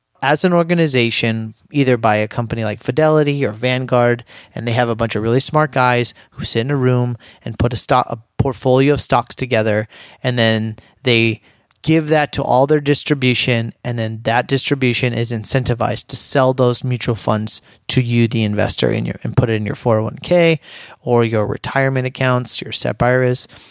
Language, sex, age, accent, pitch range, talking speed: English, male, 30-49, American, 115-135 Hz, 175 wpm